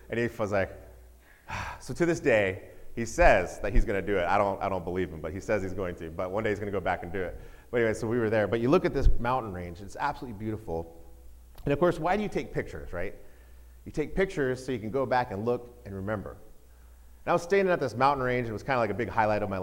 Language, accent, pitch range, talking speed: English, American, 90-120 Hz, 285 wpm